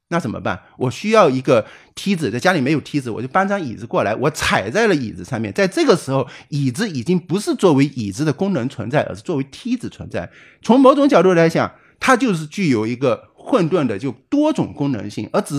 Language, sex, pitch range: Chinese, male, 130-220 Hz